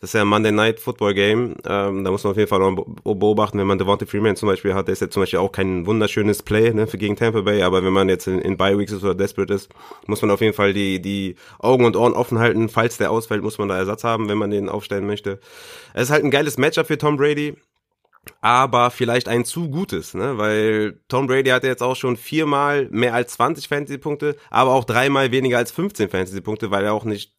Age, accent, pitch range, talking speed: 30-49, German, 100-120 Hz, 250 wpm